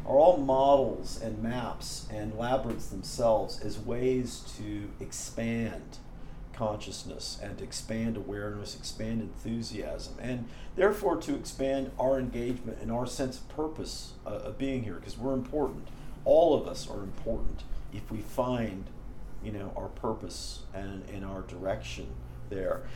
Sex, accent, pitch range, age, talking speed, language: male, American, 100-130 Hz, 50-69, 140 wpm, English